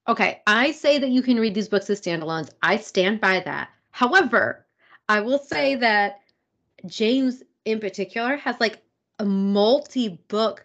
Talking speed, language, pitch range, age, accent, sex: 150 wpm, English, 185-235 Hz, 30-49, American, female